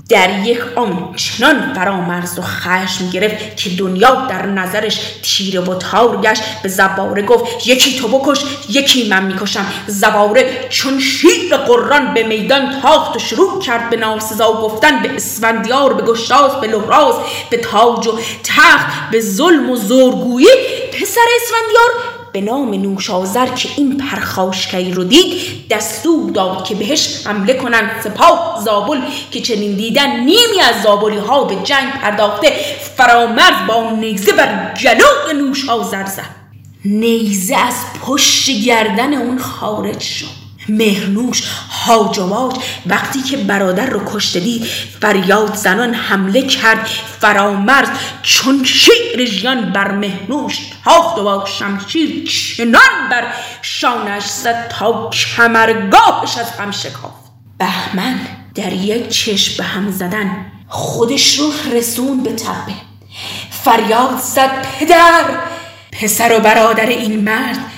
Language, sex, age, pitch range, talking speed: Persian, female, 20-39, 205-265 Hz, 130 wpm